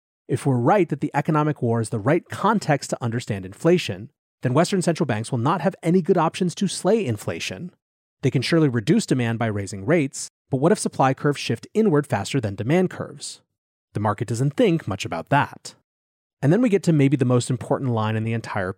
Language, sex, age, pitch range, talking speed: English, male, 30-49, 120-170 Hz, 210 wpm